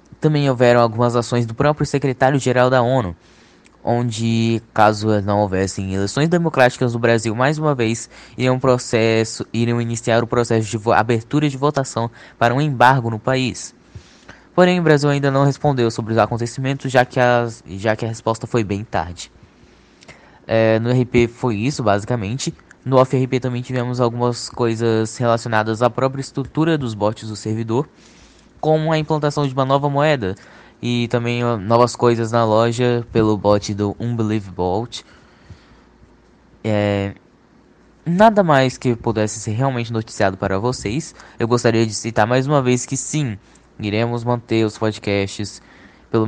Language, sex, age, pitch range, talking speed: Portuguese, male, 10-29, 110-130 Hz, 150 wpm